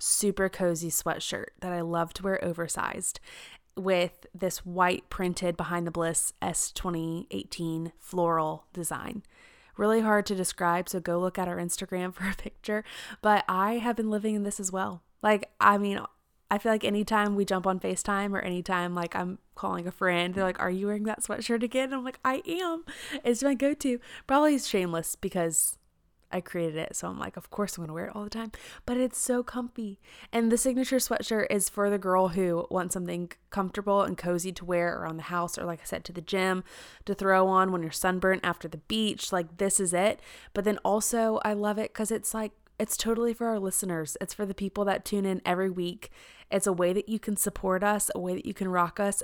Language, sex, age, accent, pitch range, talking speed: English, female, 20-39, American, 175-215 Hz, 215 wpm